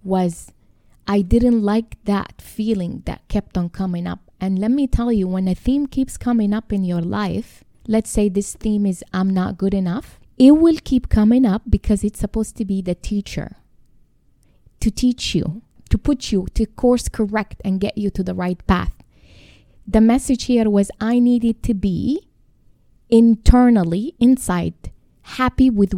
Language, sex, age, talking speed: English, female, 20-39, 170 wpm